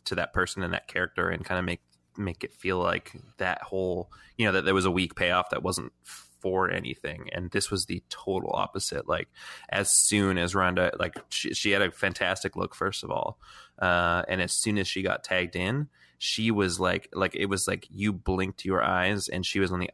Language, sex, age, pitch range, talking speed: English, male, 20-39, 90-105 Hz, 225 wpm